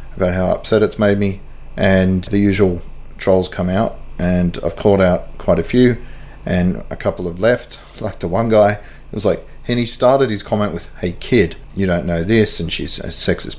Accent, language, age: Australian, English, 30-49